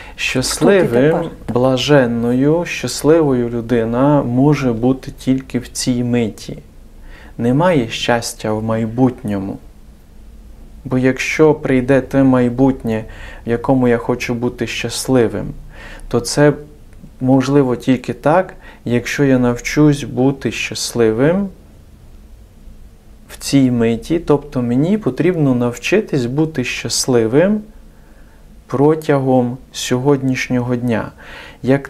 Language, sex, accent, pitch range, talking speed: Ukrainian, male, native, 115-140 Hz, 90 wpm